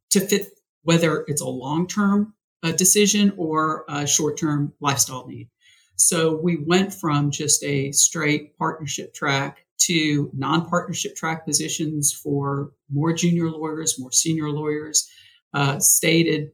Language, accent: English, American